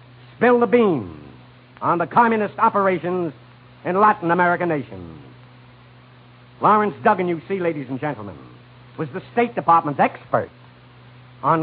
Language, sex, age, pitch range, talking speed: English, male, 60-79, 125-195 Hz, 125 wpm